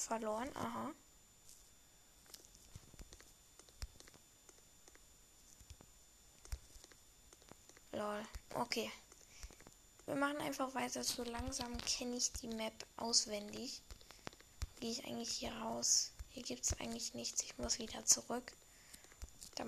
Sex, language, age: female, German, 10-29